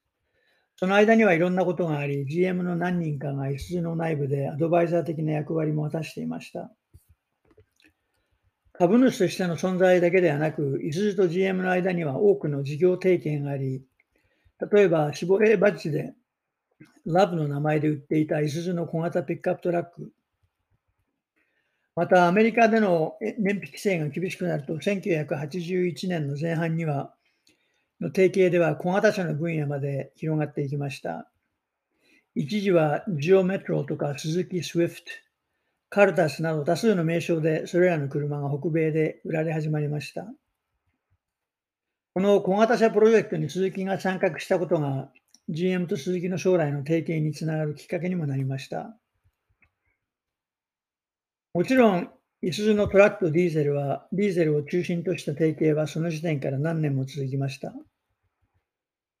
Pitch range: 150-185 Hz